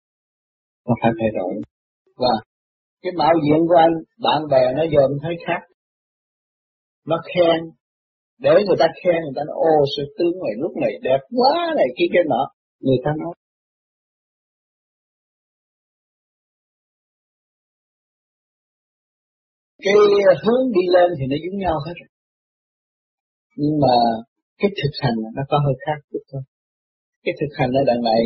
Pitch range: 135-170 Hz